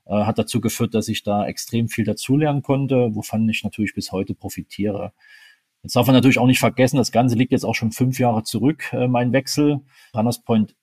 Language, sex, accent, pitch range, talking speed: German, male, German, 105-125 Hz, 200 wpm